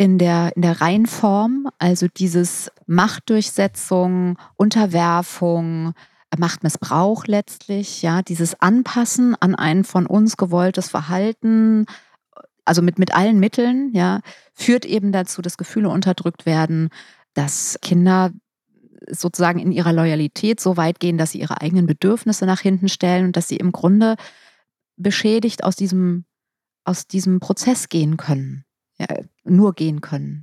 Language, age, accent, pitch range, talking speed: German, 30-49, German, 175-210 Hz, 130 wpm